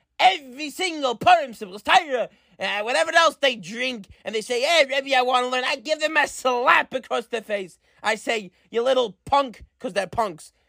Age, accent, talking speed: 30-49, American, 190 wpm